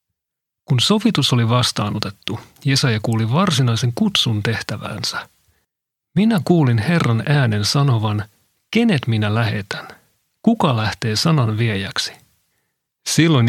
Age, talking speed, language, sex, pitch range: 40-59, 100 wpm, Finnish, male, 115-155 Hz